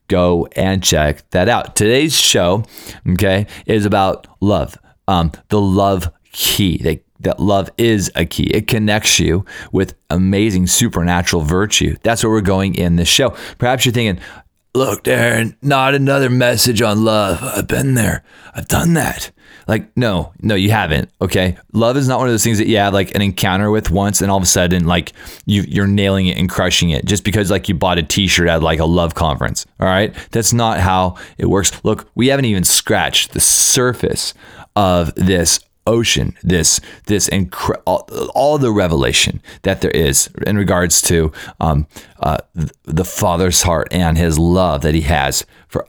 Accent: American